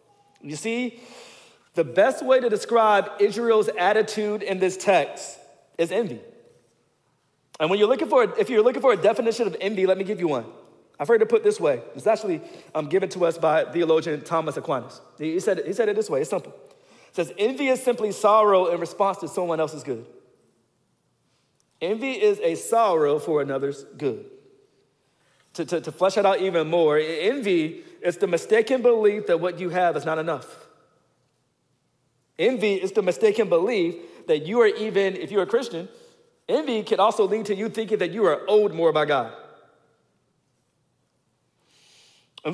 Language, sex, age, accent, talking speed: English, male, 40-59, American, 175 wpm